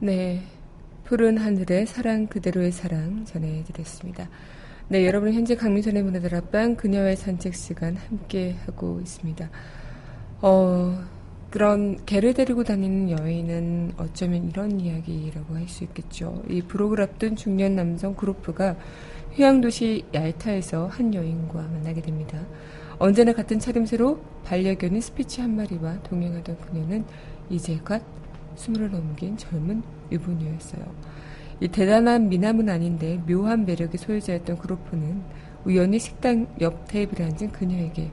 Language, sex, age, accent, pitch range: Korean, female, 20-39, native, 165-205 Hz